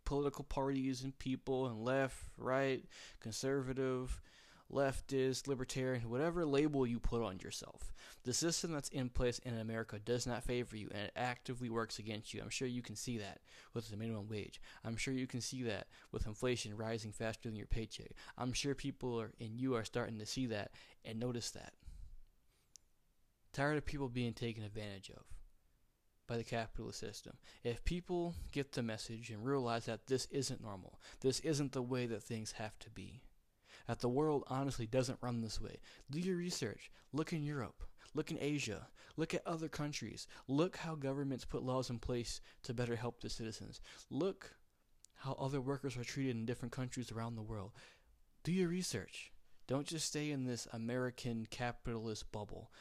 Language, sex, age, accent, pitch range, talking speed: English, male, 20-39, American, 110-135 Hz, 180 wpm